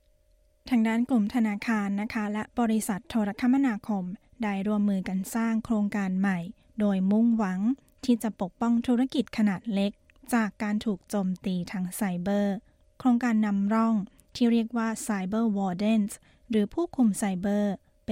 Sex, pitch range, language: female, 200-235 Hz, Thai